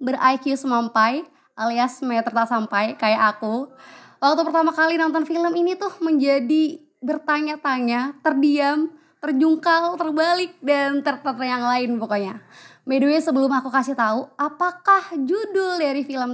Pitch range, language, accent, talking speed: 240-320 Hz, Indonesian, native, 125 wpm